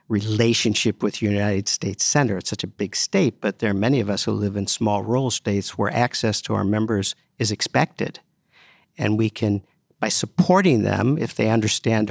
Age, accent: 50-69, American